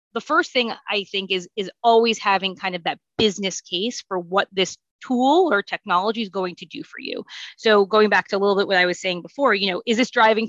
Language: English